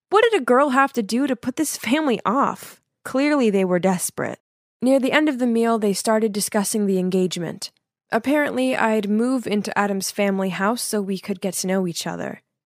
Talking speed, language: 200 wpm, English